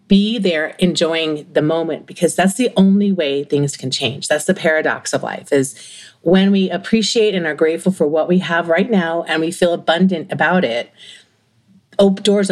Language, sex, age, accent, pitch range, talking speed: English, female, 40-59, American, 155-200 Hz, 180 wpm